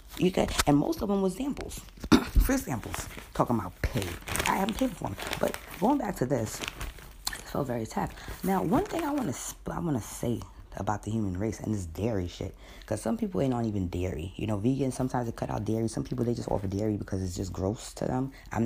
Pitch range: 95-130 Hz